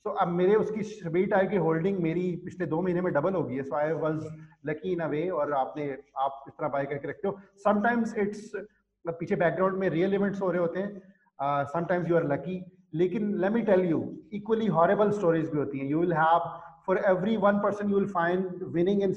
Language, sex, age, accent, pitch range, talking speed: English, male, 30-49, Indian, 155-185 Hz, 130 wpm